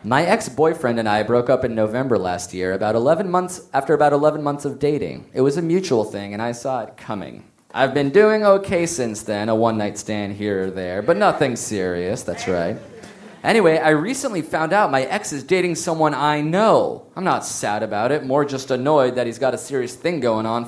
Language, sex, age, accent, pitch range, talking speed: English, male, 30-49, American, 120-170 Hz, 215 wpm